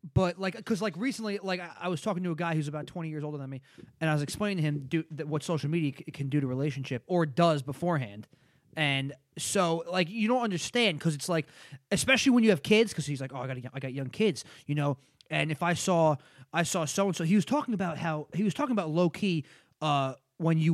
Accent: American